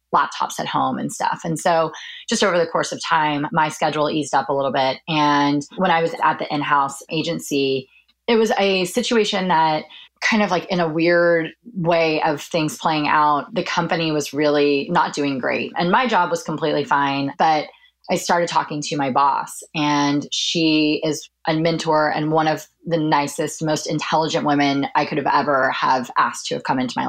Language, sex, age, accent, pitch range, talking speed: English, female, 20-39, American, 150-175 Hz, 195 wpm